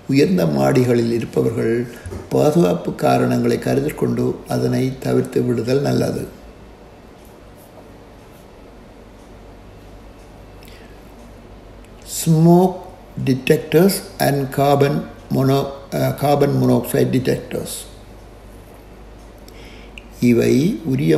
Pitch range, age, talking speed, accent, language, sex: 95-140 Hz, 60-79, 55 wpm, native, Tamil, male